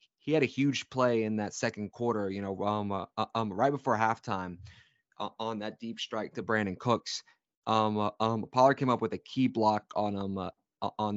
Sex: male